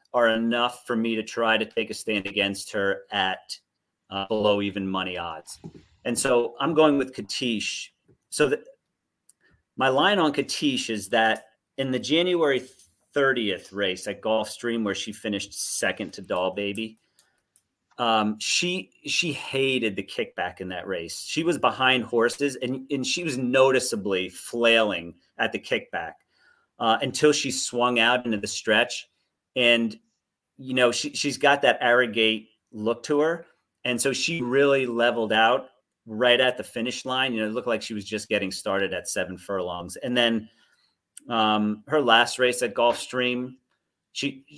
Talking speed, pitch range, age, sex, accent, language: 165 wpm, 105-130 Hz, 40-59, male, American, English